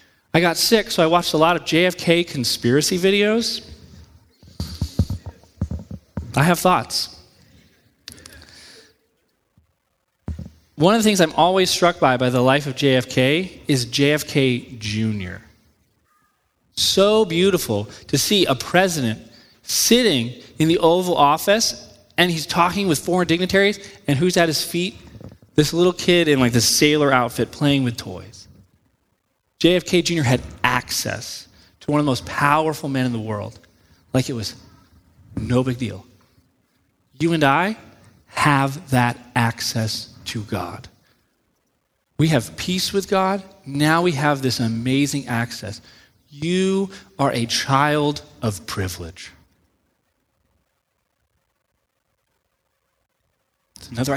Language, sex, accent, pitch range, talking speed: English, male, American, 110-165 Hz, 125 wpm